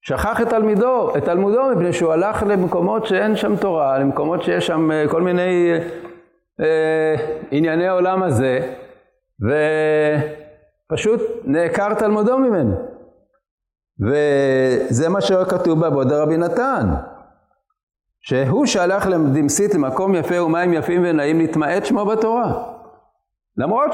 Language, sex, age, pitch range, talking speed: Hebrew, male, 50-69, 155-215 Hz, 110 wpm